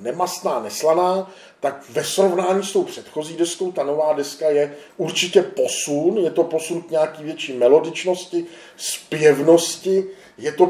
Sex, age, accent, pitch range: male, 50-69, native, 135-170 Hz